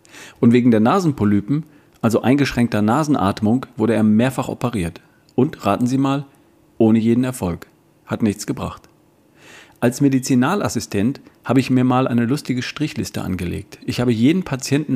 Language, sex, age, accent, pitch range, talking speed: German, male, 40-59, German, 105-135 Hz, 140 wpm